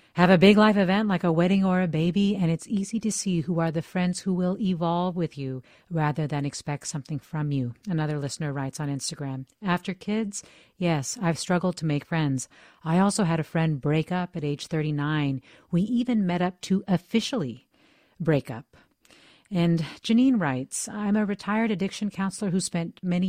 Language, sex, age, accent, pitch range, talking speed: English, female, 40-59, American, 155-185 Hz, 190 wpm